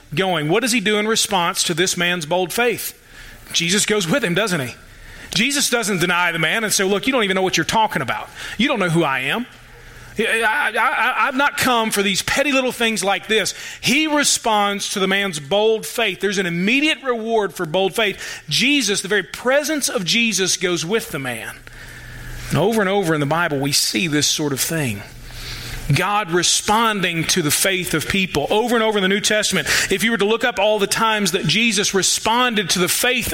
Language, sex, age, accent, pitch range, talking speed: English, male, 40-59, American, 155-220 Hz, 210 wpm